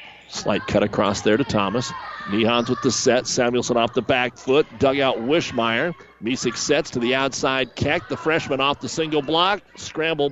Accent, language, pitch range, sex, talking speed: American, English, 115-150 Hz, male, 175 wpm